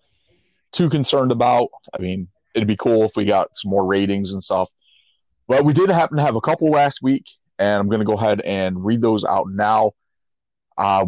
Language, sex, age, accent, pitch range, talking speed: English, male, 30-49, American, 100-130 Hz, 205 wpm